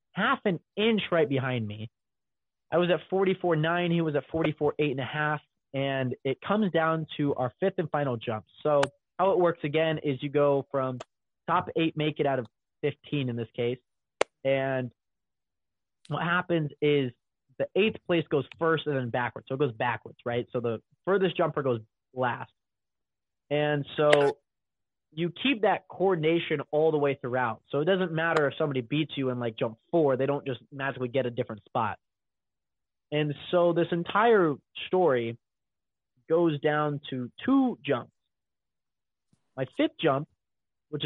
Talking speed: 165 wpm